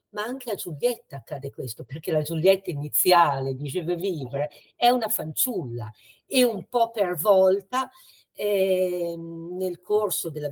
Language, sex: Italian, female